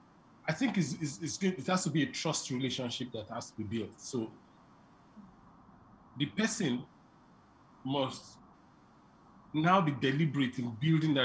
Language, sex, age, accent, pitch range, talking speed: English, male, 40-59, Nigerian, 135-195 Hz, 150 wpm